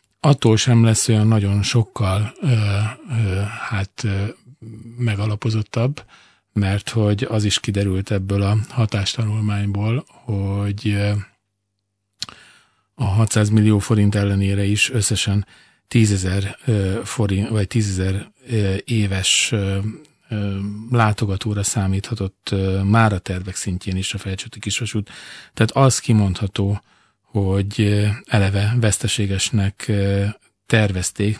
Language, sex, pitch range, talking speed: Hungarian, male, 100-115 Hz, 85 wpm